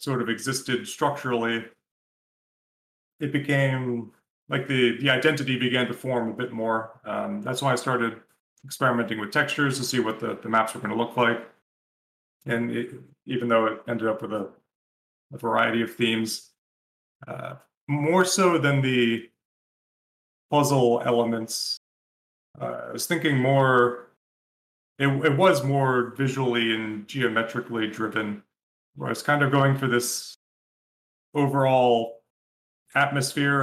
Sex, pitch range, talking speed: male, 115-140 Hz, 140 wpm